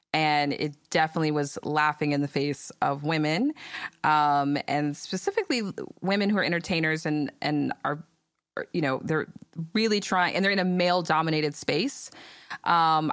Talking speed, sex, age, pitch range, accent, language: 155 wpm, female, 20-39, 145-190 Hz, American, English